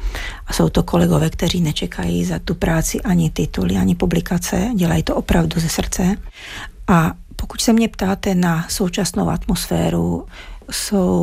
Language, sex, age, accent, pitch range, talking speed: Czech, female, 40-59, native, 170-195 Hz, 145 wpm